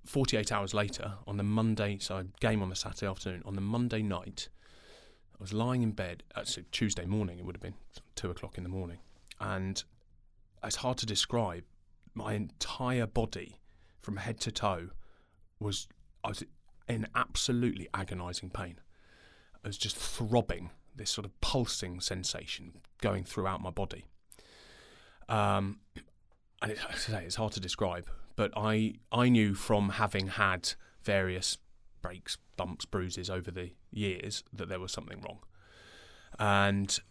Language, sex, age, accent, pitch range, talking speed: English, male, 30-49, British, 95-110 Hz, 155 wpm